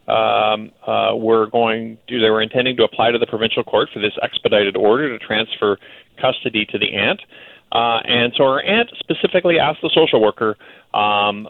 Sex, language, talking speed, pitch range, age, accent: male, English, 170 wpm, 110-125 Hz, 40-59, American